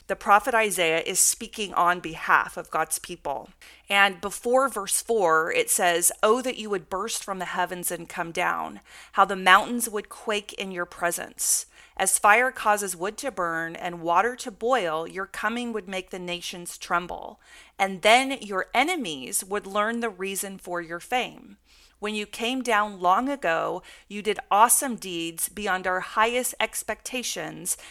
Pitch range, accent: 180-235 Hz, American